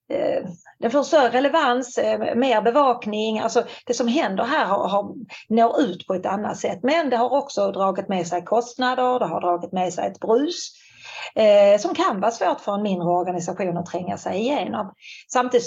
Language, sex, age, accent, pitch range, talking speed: Swedish, female, 30-49, native, 185-245 Hz, 180 wpm